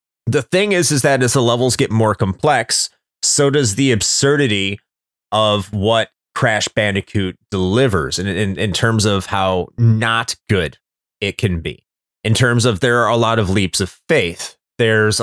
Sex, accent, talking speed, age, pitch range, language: male, American, 170 wpm, 30-49, 100-125 Hz, English